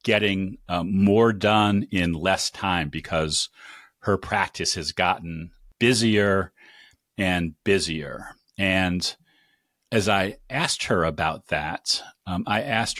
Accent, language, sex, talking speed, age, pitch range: American, English, male, 115 wpm, 40-59, 90-110 Hz